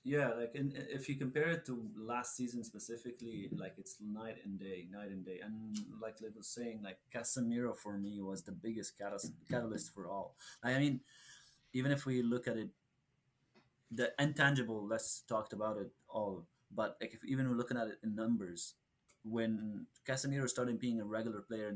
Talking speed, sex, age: 175 wpm, male, 30-49